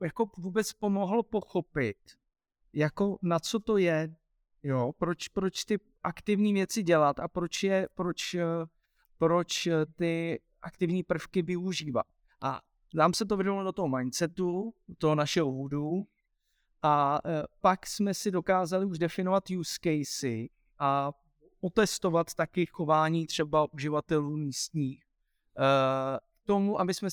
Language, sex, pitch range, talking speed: Slovak, male, 155-195 Hz, 125 wpm